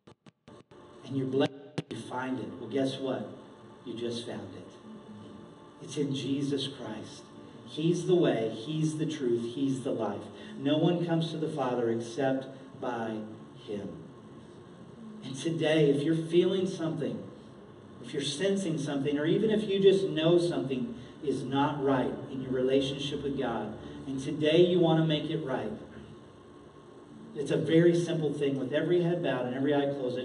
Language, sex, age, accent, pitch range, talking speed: English, male, 40-59, American, 120-155 Hz, 160 wpm